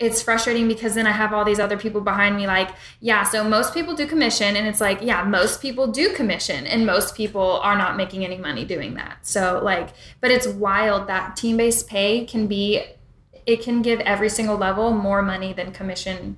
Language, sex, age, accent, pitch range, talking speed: English, female, 10-29, American, 190-215 Hz, 215 wpm